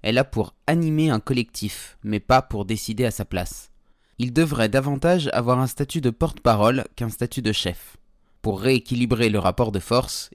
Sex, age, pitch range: male, 20-39, 105-140 Hz